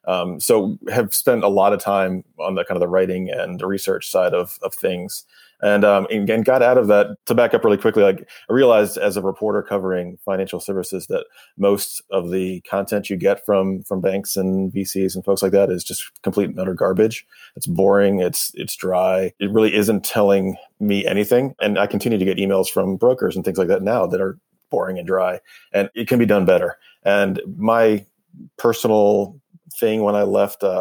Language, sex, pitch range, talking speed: English, male, 95-110 Hz, 210 wpm